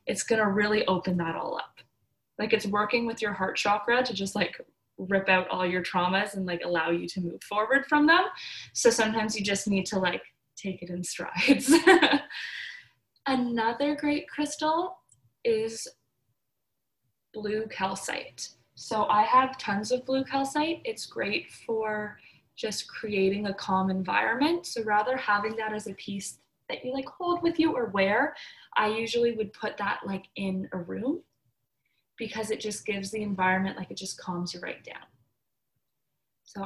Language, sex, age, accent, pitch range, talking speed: English, female, 10-29, American, 195-290 Hz, 165 wpm